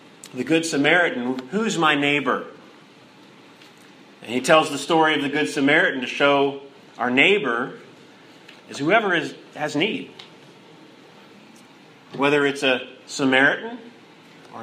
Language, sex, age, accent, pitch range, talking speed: English, male, 40-59, American, 140-210 Hz, 120 wpm